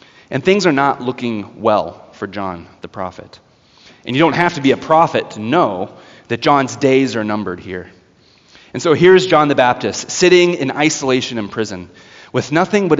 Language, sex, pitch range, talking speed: English, male, 120-180 Hz, 185 wpm